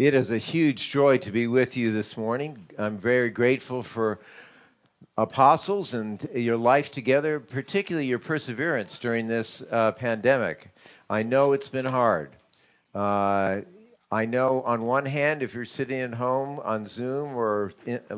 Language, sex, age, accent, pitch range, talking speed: English, male, 50-69, American, 105-130 Hz, 155 wpm